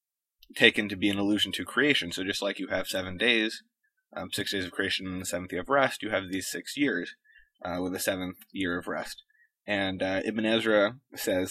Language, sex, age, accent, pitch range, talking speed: English, male, 20-39, American, 95-120 Hz, 220 wpm